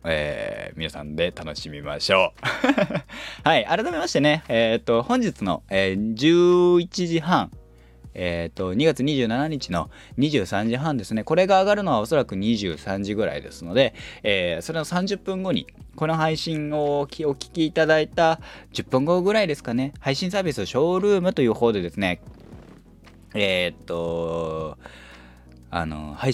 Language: Japanese